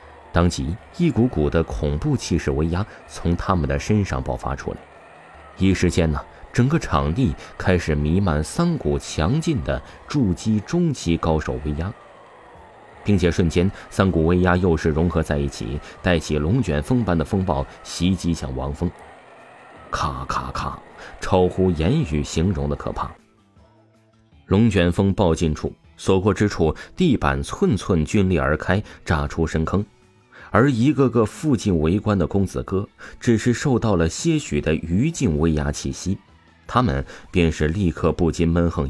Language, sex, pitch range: Chinese, male, 80-105 Hz